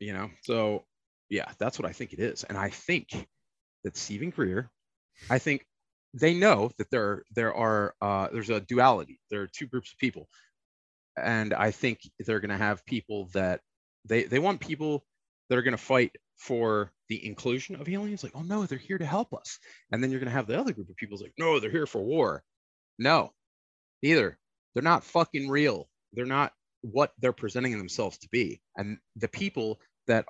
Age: 30-49